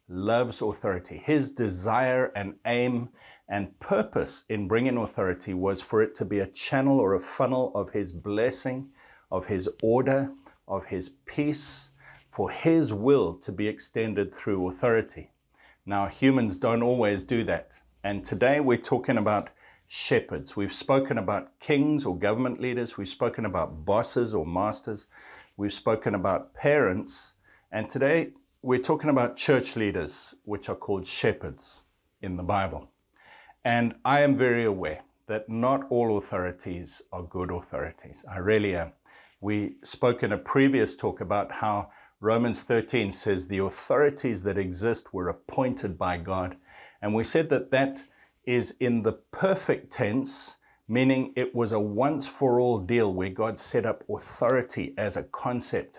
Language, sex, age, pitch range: English, male, 50-69, 100-130 Hz